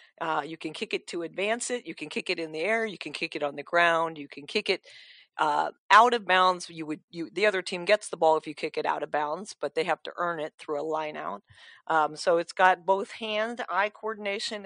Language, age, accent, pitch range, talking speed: English, 40-59, American, 160-200 Hz, 260 wpm